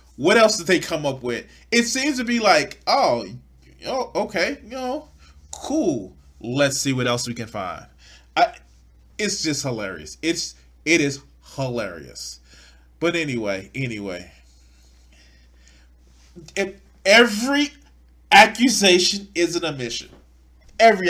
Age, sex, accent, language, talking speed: 20-39, male, American, English, 120 wpm